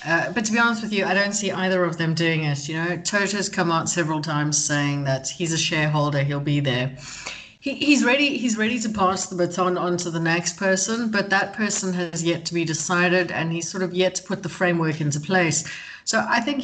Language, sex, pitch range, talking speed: English, female, 165-210 Hz, 240 wpm